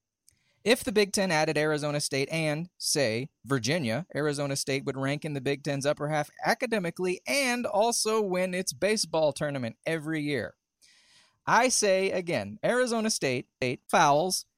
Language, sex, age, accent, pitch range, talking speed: English, male, 30-49, American, 145-210 Hz, 145 wpm